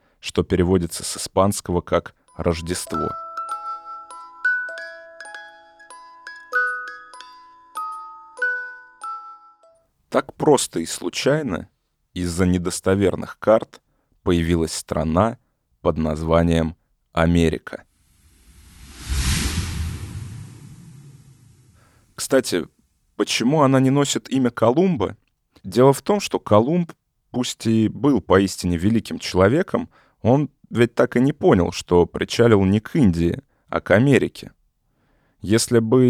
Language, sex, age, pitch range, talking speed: Russian, male, 30-49, 95-140 Hz, 85 wpm